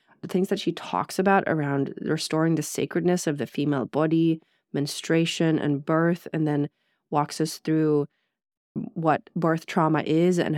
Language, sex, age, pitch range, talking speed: English, female, 30-49, 150-180 Hz, 145 wpm